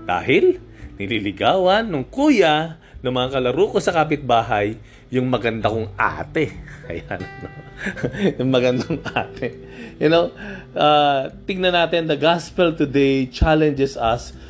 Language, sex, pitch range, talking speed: Filipino, male, 120-165 Hz, 115 wpm